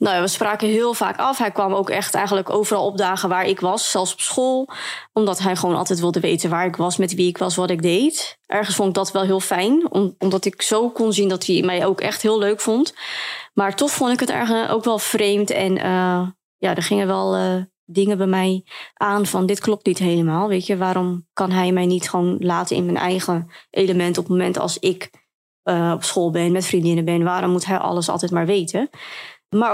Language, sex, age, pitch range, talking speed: Dutch, female, 20-39, 180-200 Hz, 230 wpm